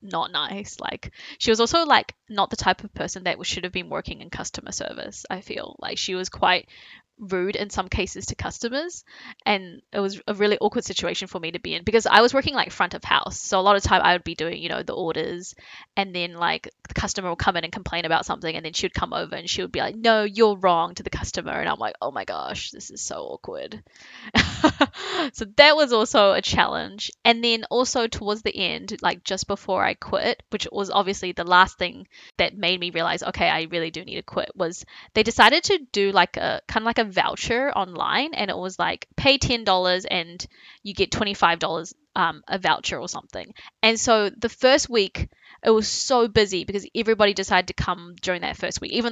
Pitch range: 185-230 Hz